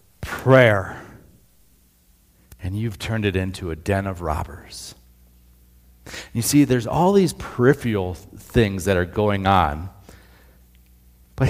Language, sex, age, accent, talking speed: English, male, 40-59, American, 115 wpm